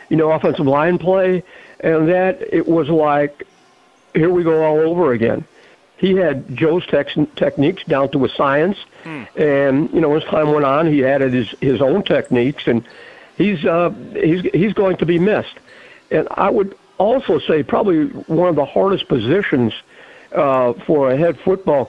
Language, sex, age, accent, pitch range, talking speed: English, male, 60-79, American, 140-175 Hz, 175 wpm